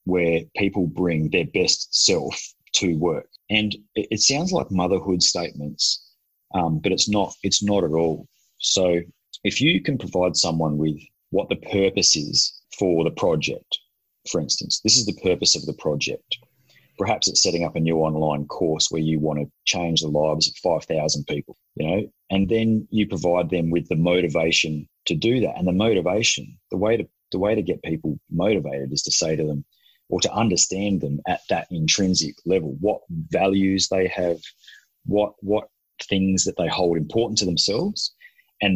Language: English